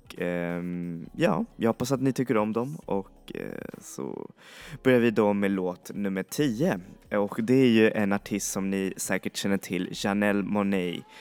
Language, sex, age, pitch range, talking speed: Swedish, male, 20-39, 95-110 Hz, 175 wpm